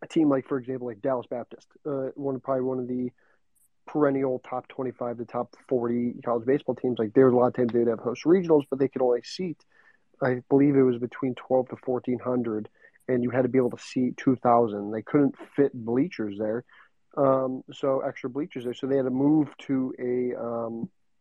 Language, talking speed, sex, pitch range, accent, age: English, 215 wpm, male, 120-135 Hz, American, 30-49